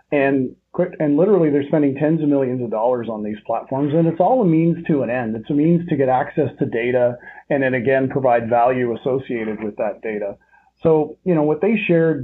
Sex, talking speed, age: male, 220 wpm, 40-59